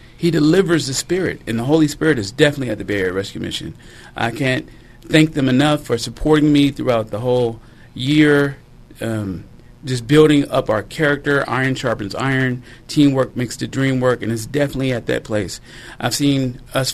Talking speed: 180 wpm